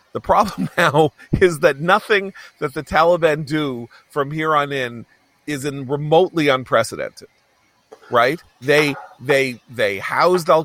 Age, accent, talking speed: 40-59, American, 135 wpm